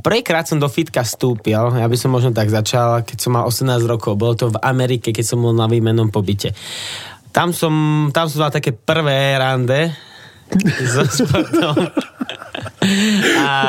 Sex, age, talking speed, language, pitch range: male, 20-39, 160 wpm, Slovak, 115-135 Hz